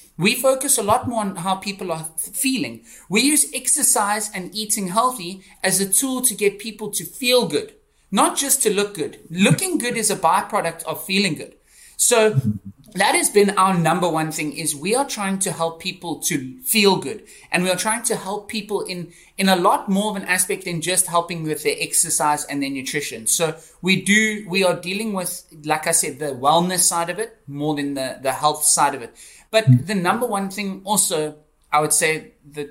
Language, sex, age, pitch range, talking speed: English, male, 30-49, 160-205 Hz, 205 wpm